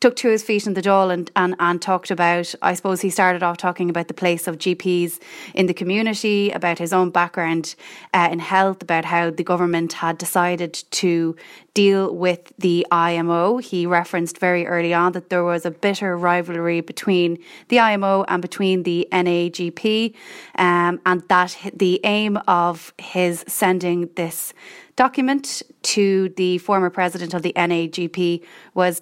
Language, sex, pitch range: English, female, 170-190 Hz